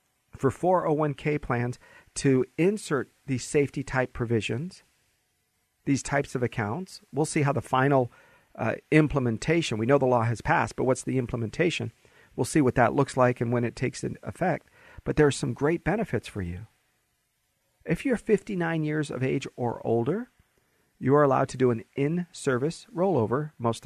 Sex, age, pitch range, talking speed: male, 40-59, 120-155 Hz, 165 wpm